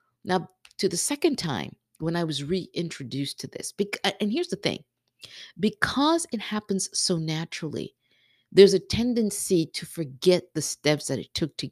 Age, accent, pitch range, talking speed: 50-69, American, 145-190 Hz, 160 wpm